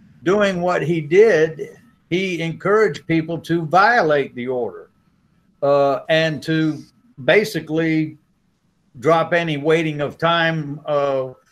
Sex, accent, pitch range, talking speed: male, American, 140-170 Hz, 110 wpm